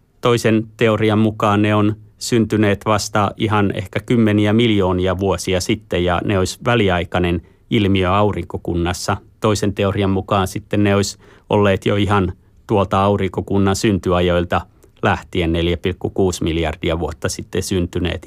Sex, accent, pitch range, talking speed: male, native, 90-105 Hz, 120 wpm